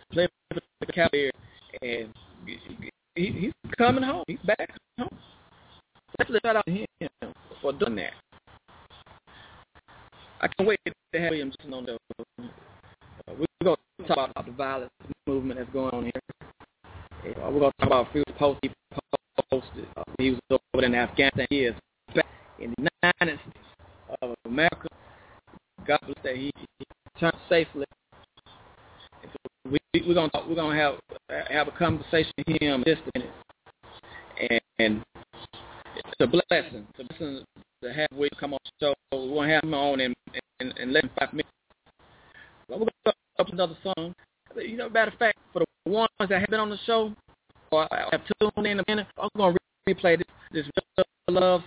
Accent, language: American, English